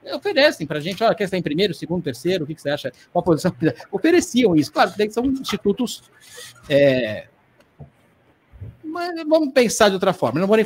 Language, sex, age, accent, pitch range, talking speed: Portuguese, male, 50-69, Brazilian, 150-225 Hz, 190 wpm